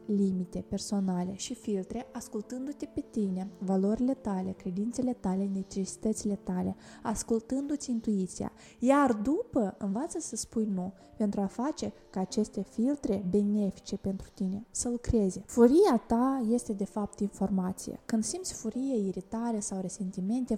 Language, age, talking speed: Romanian, 20-39, 130 wpm